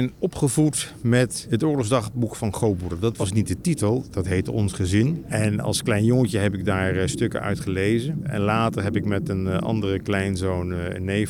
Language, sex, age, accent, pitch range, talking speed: Dutch, male, 50-69, Dutch, 95-125 Hz, 185 wpm